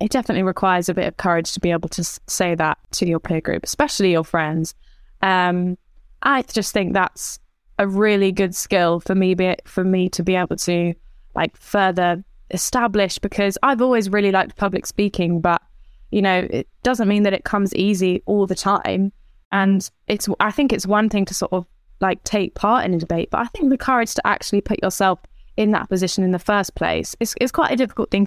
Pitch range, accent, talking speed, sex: 185-230 Hz, British, 210 wpm, female